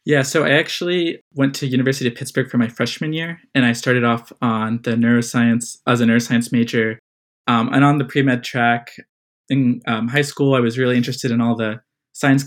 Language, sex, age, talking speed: English, male, 20-39, 200 wpm